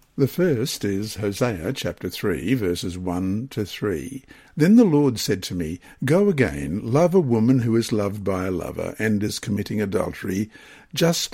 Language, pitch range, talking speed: English, 110-145 Hz, 170 wpm